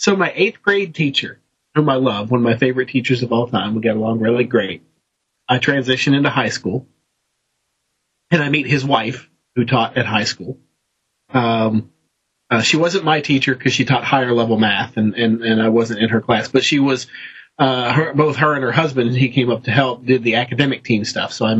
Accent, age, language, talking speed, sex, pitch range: American, 40-59, English, 215 wpm, male, 115-140 Hz